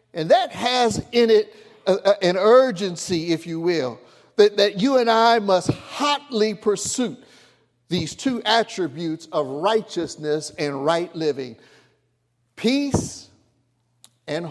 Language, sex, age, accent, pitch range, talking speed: English, male, 60-79, American, 150-215 Hz, 120 wpm